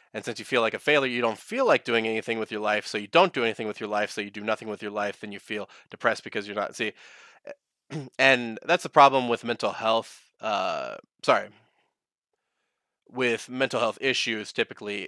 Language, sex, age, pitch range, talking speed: English, male, 20-39, 110-130 Hz, 210 wpm